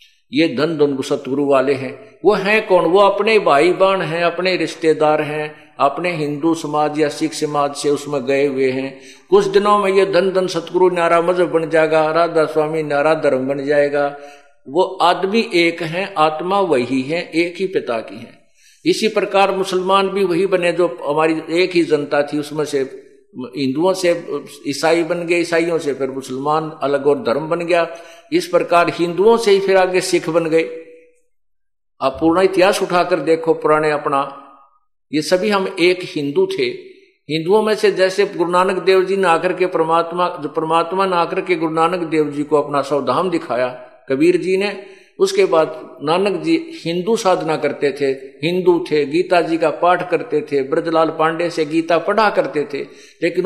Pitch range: 145-190 Hz